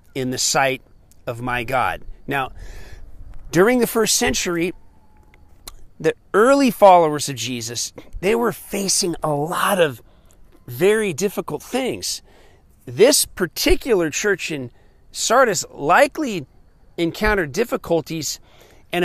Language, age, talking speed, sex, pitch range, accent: English, 40-59, 105 wpm, male, 130-190 Hz, American